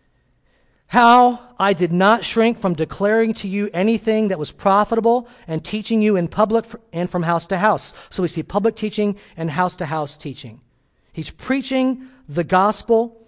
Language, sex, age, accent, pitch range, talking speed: English, male, 40-59, American, 165-215 Hz, 165 wpm